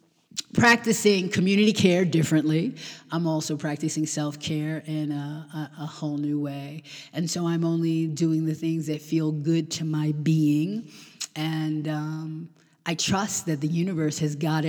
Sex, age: female, 30-49